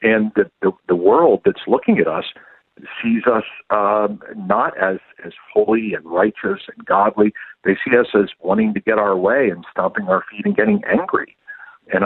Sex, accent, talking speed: male, American, 185 wpm